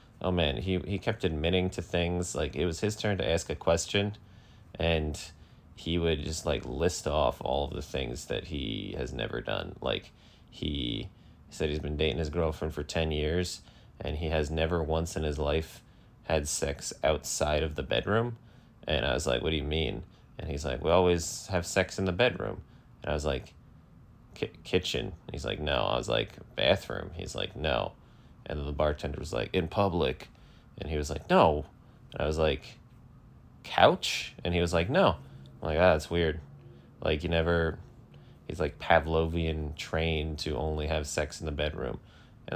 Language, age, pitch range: English, 20-39, 80-90 Hz